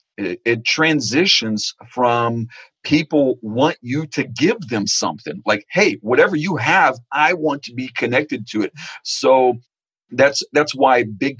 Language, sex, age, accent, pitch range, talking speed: English, male, 40-59, American, 105-130 Hz, 140 wpm